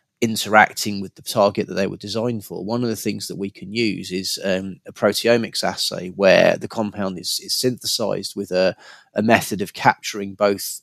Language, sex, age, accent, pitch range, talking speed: English, male, 30-49, British, 100-115 Hz, 195 wpm